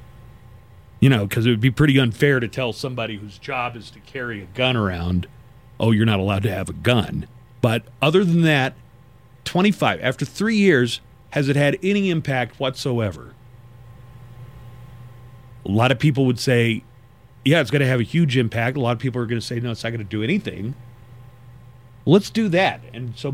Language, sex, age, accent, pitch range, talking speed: English, male, 40-59, American, 120-140 Hz, 195 wpm